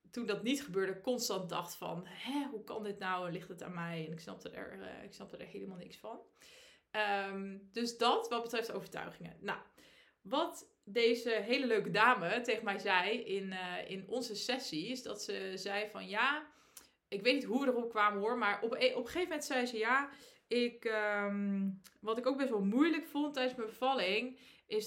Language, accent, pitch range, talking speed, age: Dutch, Dutch, 200-250 Hz, 200 wpm, 20-39